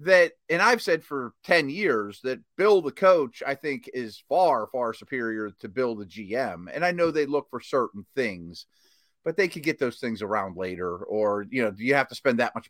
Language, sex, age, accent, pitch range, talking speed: English, male, 30-49, American, 115-175 Hz, 220 wpm